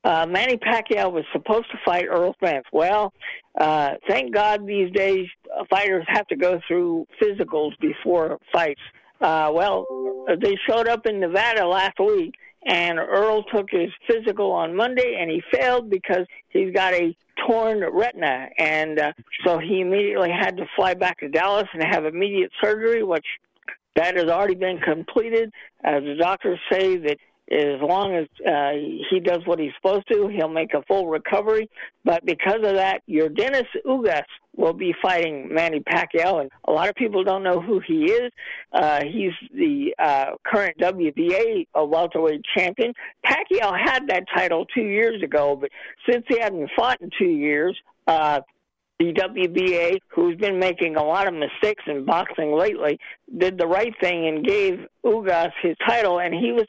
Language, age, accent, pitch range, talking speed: English, 60-79, American, 165-225 Hz, 170 wpm